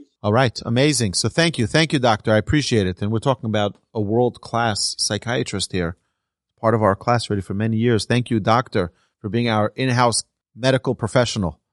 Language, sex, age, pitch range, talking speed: English, male, 30-49, 110-150 Hz, 190 wpm